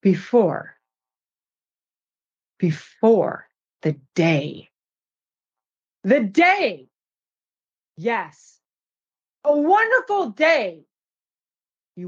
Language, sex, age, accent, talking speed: English, female, 40-59, American, 55 wpm